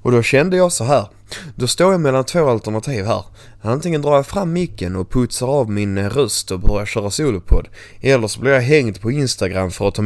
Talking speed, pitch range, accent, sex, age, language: 220 wpm, 105-135 Hz, Swedish, male, 20-39, English